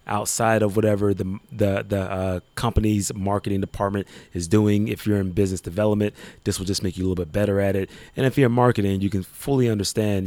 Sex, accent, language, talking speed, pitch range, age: male, American, English, 215 wpm, 95-110 Hz, 30-49